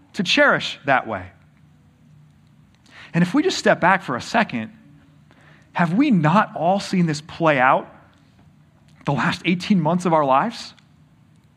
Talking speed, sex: 145 wpm, male